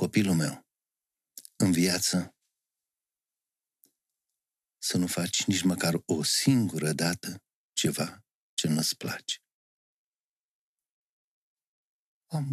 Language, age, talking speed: Romanian, 50-69, 80 wpm